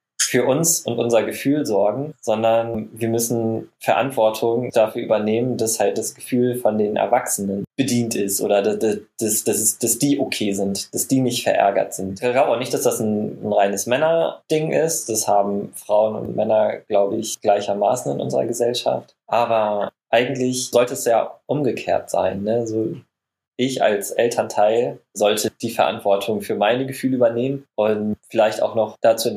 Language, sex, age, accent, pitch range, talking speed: German, male, 20-39, German, 105-125 Hz, 165 wpm